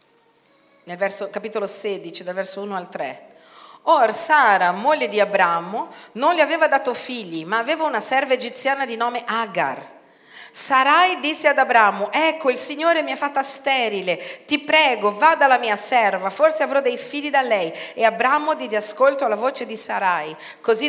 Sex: female